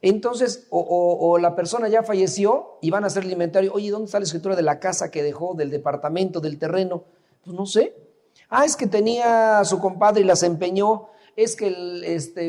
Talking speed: 200 wpm